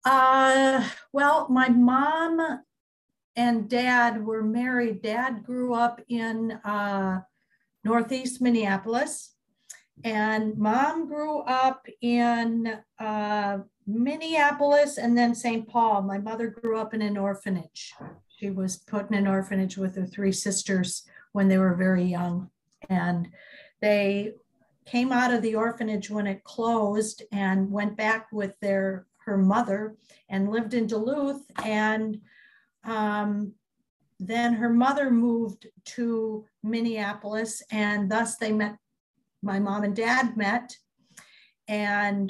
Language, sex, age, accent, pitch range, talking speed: English, female, 50-69, American, 205-245 Hz, 120 wpm